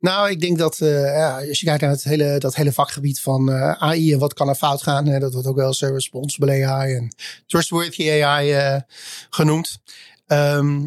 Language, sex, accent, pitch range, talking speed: Dutch, male, Dutch, 140-155 Hz, 210 wpm